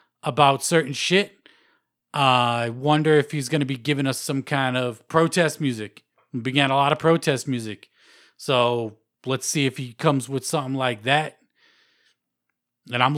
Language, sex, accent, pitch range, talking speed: English, male, American, 125-150 Hz, 170 wpm